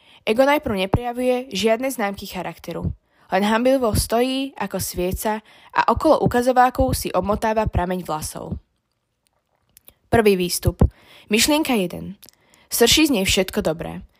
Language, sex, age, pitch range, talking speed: Slovak, female, 20-39, 185-240 Hz, 115 wpm